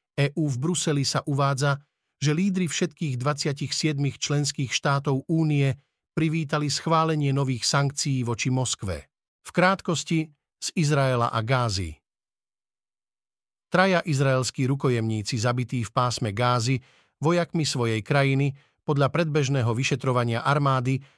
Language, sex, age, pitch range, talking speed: Slovak, male, 50-69, 125-150 Hz, 110 wpm